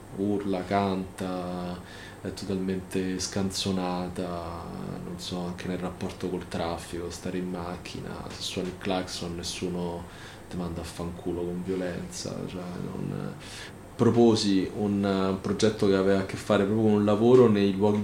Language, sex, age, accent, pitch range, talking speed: Italian, male, 30-49, native, 90-105 Hz, 140 wpm